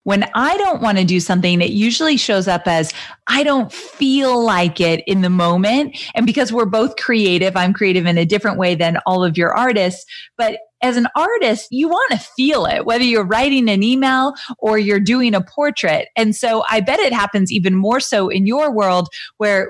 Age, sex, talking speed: 30-49, female, 205 wpm